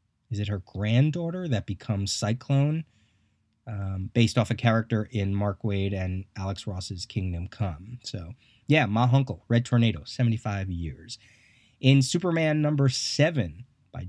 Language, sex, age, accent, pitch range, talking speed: English, male, 30-49, American, 105-125 Hz, 140 wpm